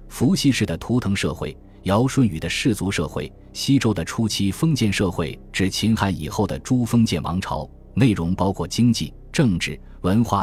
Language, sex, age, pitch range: Chinese, male, 20-39, 85-120 Hz